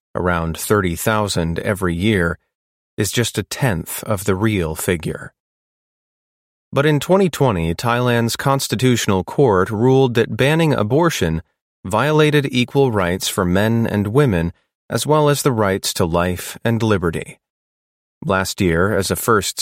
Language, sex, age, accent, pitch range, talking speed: English, male, 30-49, American, 95-125 Hz, 130 wpm